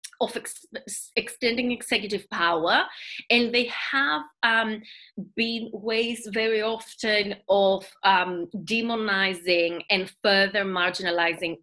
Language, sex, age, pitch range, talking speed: Greek, female, 20-39, 190-235 Hz, 95 wpm